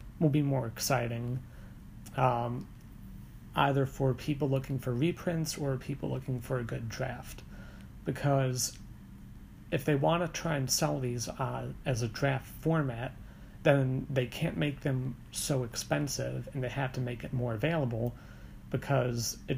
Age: 30-49